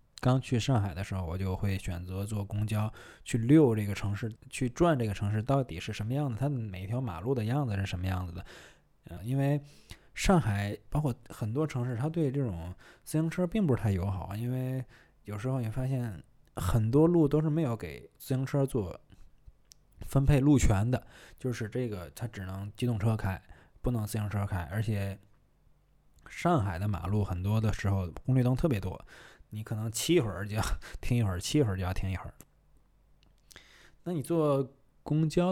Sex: male